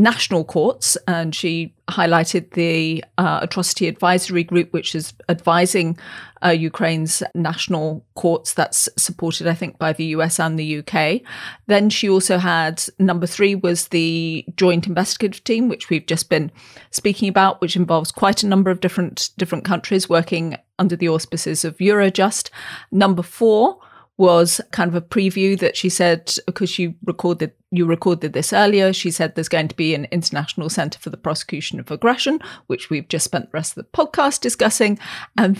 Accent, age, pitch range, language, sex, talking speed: British, 30-49, 165-200 Hz, English, female, 170 wpm